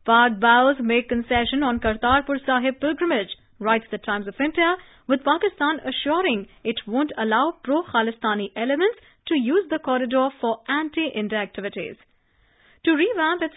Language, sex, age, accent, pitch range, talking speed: English, female, 30-49, Indian, 230-300 Hz, 140 wpm